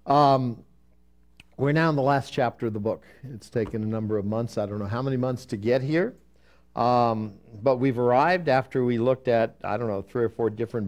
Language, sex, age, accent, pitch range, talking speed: English, male, 60-79, American, 110-140 Hz, 220 wpm